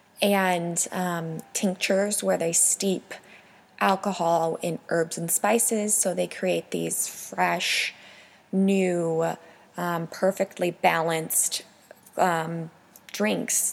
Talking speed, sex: 95 wpm, female